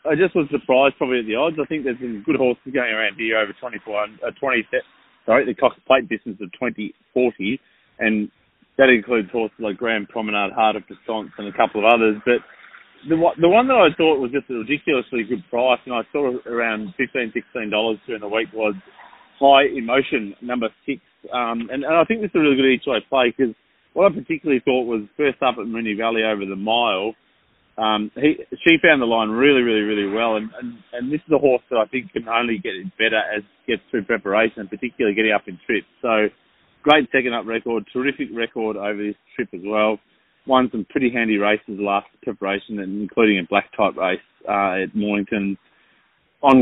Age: 30-49